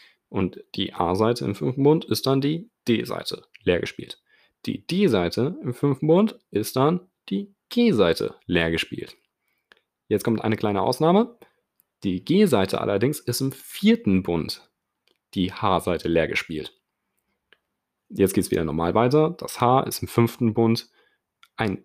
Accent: German